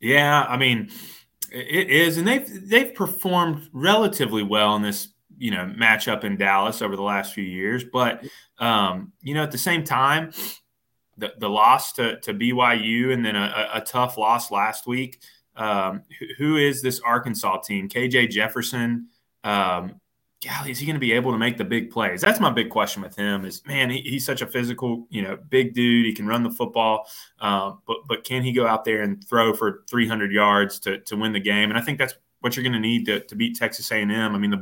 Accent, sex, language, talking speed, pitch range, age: American, male, English, 215 wpm, 110-135 Hz, 20-39